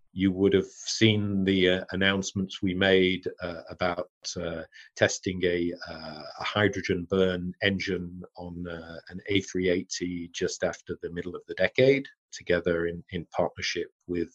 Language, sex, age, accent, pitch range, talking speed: English, male, 40-59, British, 90-105 Hz, 145 wpm